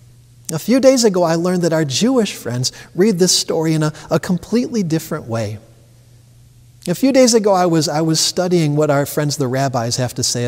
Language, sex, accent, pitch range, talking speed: English, male, American, 130-170 Hz, 205 wpm